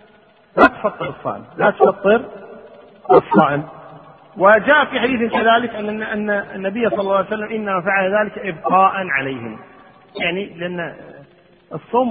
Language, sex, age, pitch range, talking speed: Arabic, male, 40-59, 180-230 Hz, 125 wpm